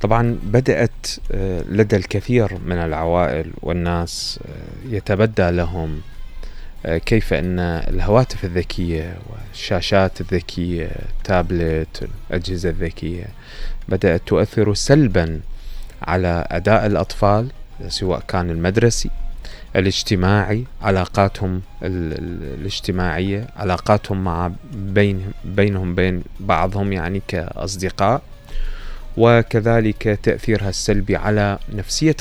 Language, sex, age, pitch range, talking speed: Arabic, male, 20-39, 90-110 Hz, 75 wpm